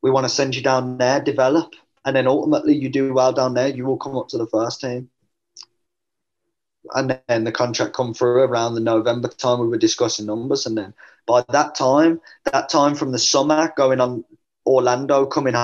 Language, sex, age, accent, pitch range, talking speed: English, male, 20-39, British, 125-150 Hz, 200 wpm